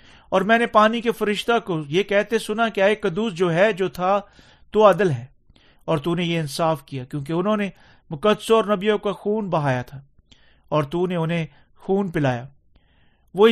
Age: 40-59